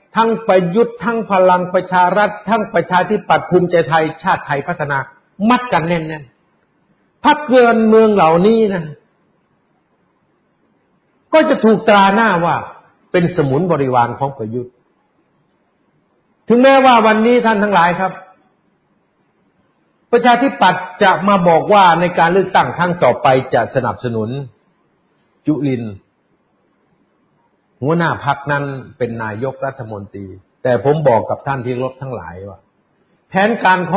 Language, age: Thai, 60-79